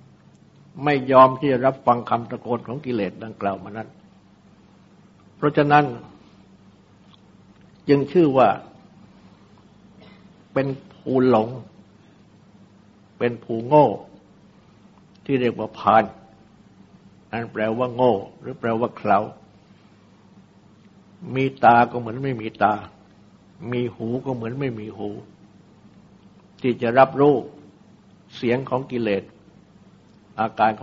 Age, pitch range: 60-79, 110-135 Hz